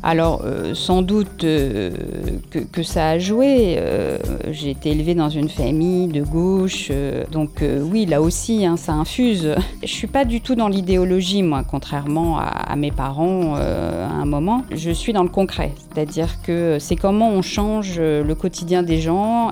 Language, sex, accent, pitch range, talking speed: French, female, French, 155-190 Hz, 190 wpm